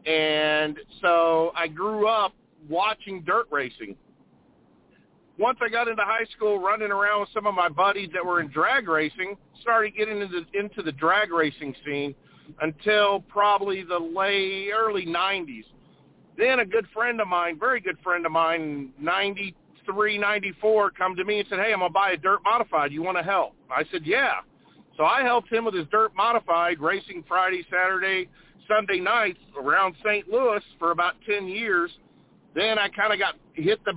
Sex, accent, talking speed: male, American, 175 wpm